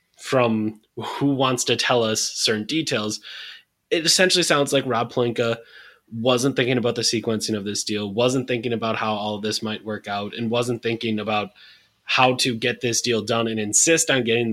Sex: male